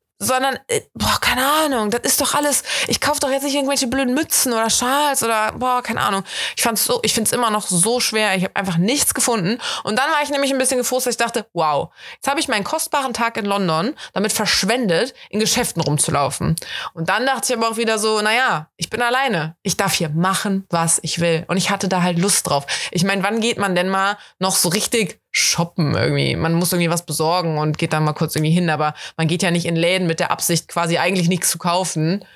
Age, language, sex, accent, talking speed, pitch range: 20-39, German, female, German, 230 wpm, 170-240 Hz